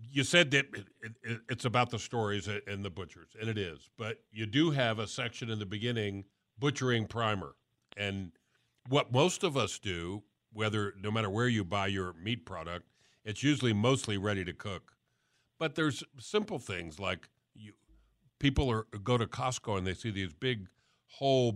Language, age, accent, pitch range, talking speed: English, 50-69, American, 95-125 Hz, 180 wpm